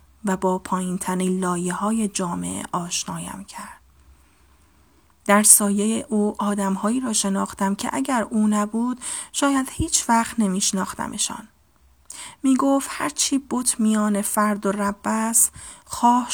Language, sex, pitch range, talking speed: Persian, female, 190-225 Hz, 110 wpm